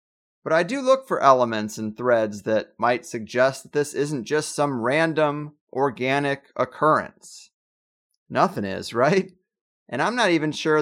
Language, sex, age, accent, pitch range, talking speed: English, male, 30-49, American, 120-170 Hz, 150 wpm